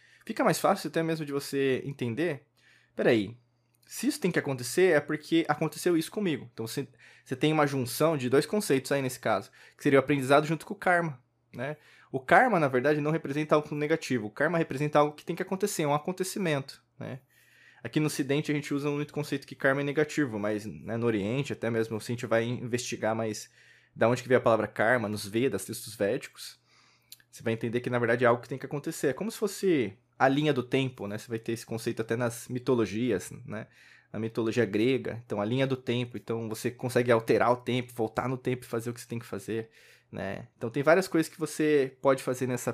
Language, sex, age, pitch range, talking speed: Portuguese, male, 20-39, 120-150 Hz, 225 wpm